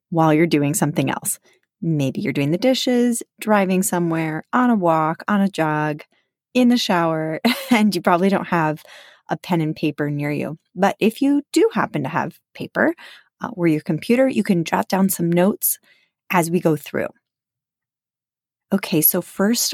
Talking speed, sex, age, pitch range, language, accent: 170 wpm, female, 30-49, 155-200 Hz, English, American